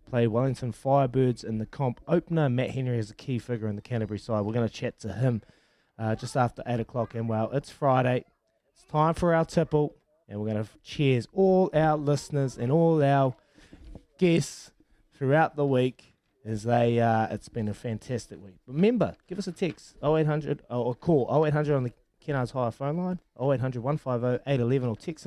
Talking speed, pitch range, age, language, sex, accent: 190 wpm, 115-145 Hz, 20-39, English, male, Australian